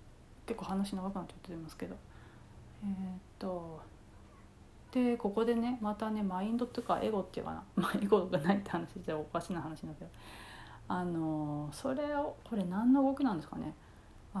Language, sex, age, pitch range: Japanese, female, 30-49, 170-245 Hz